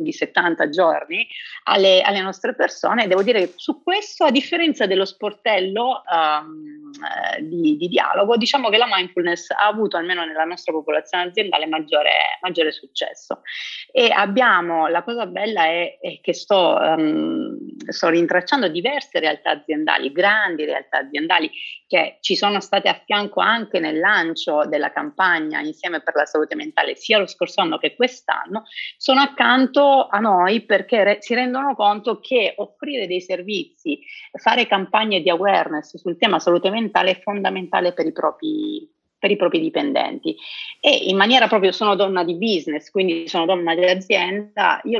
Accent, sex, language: native, female, Italian